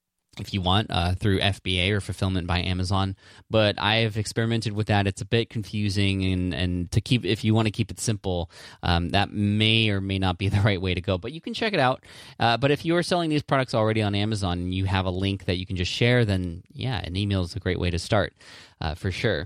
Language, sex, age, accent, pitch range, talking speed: English, male, 20-39, American, 90-115 Hz, 255 wpm